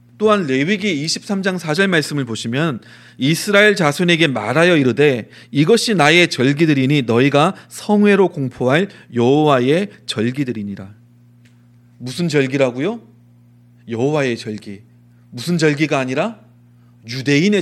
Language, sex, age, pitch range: Korean, male, 30-49, 120-175 Hz